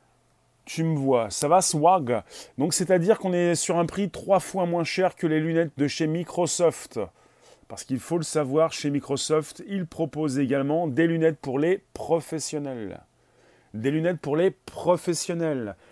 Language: French